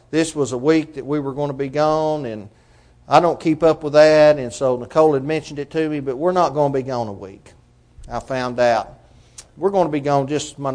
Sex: male